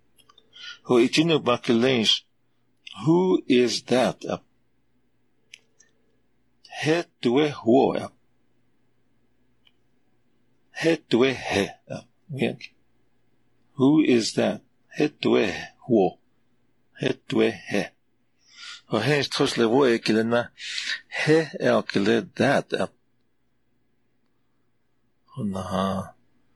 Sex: male